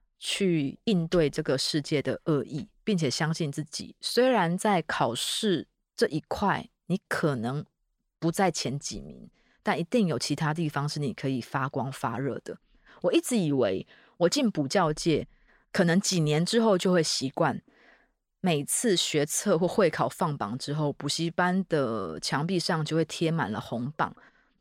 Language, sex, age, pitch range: Chinese, female, 20-39, 145-190 Hz